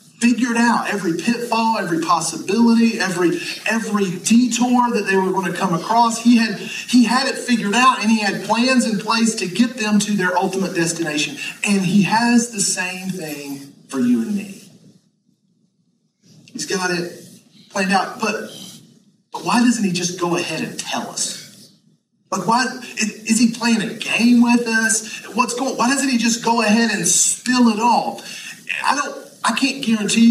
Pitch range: 180-230 Hz